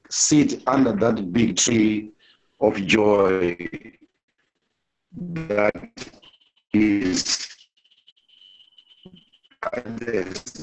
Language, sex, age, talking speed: English, male, 60-79, 60 wpm